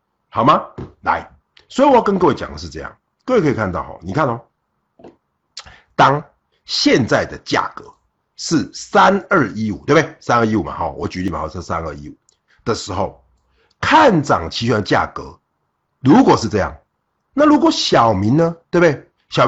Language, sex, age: Chinese, male, 50-69